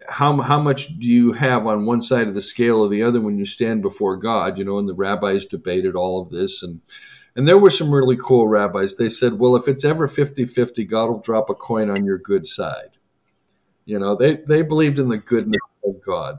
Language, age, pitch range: English, 50-69, 115-155 Hz